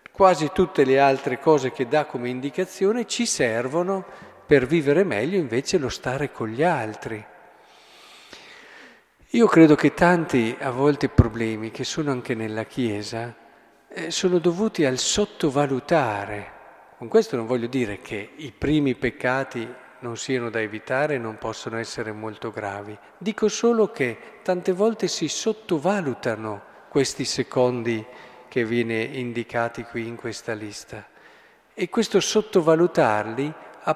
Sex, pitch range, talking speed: male, 120-165 Hz, 135 wpm